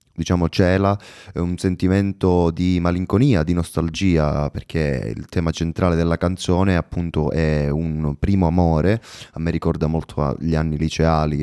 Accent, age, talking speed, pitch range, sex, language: native, 20-39, 135 wpm, 80-95 Hz, male, Italian